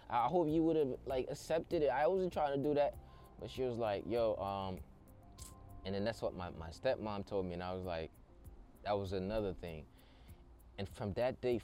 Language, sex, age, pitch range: English, male, 20-39, 100-140 Hz